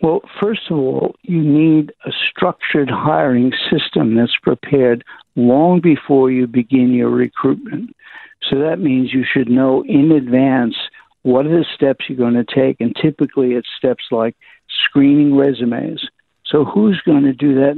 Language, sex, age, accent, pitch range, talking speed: English, male, 60-79, American, 135-160 Hz, 160 wpm